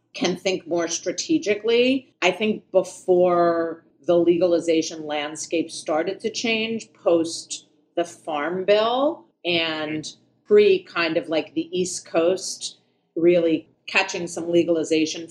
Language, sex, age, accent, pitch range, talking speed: English, female, 40-59, American, 155-185 Hz, 115 wpm